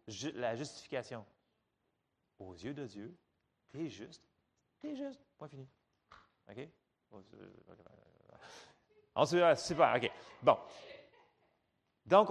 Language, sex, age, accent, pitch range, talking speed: French, male, 30-49, French, 120-195 Hz, 100 wpm